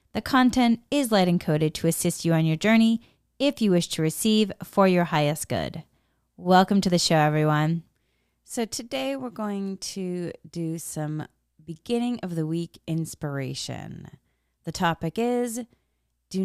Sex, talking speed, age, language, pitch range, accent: female, 150 wpm, 30-49, English, 130-185 Hz, American